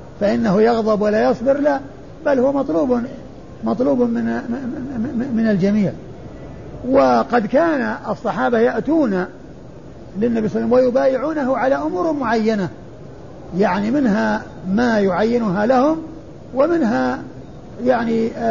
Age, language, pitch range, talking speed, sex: 50-69, Arabic, 210-255 Hz, 105 wpm, male